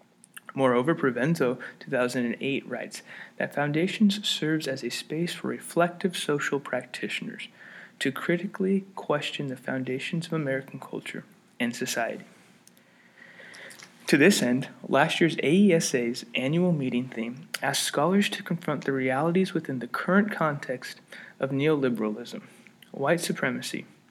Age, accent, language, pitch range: 20-39, American, English, 130-170 Hz